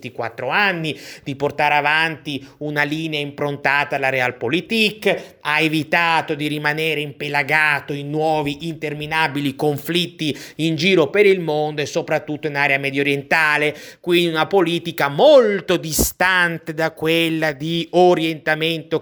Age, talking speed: 30-49, 120 wpm